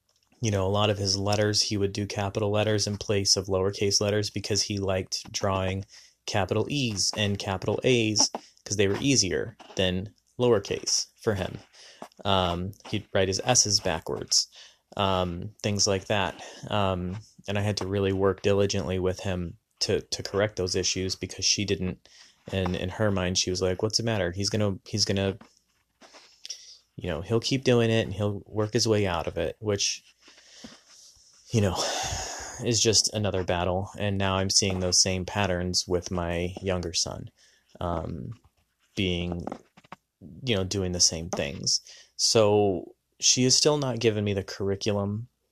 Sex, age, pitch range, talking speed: male, 30-49, 95-105 Hz, 165 wpm